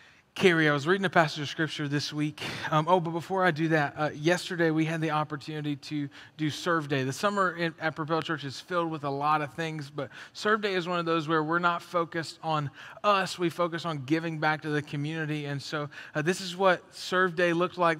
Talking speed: 235 wpm